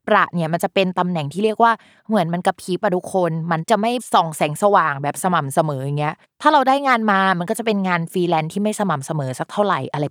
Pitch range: 170-225 Hz